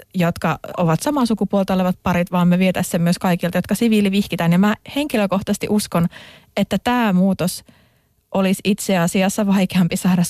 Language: Finnish